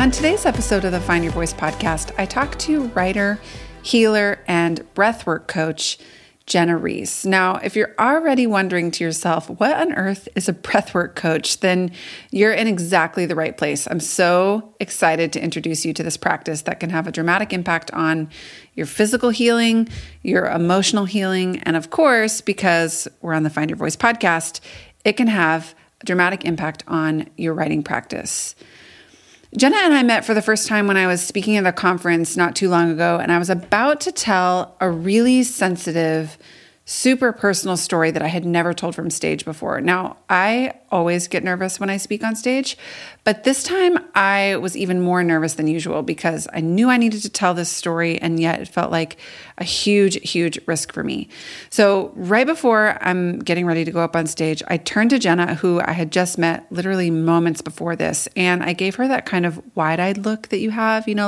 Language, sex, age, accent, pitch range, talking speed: English, female, 30-49, American, 165-210 Hz, 195 wpm